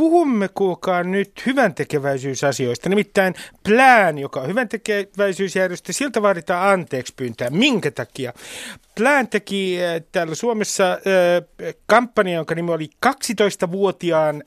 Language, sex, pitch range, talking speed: Finnish, male, 160-210 Hz, 105 wpm